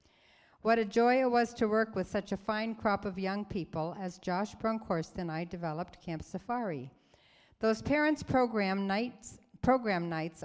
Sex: female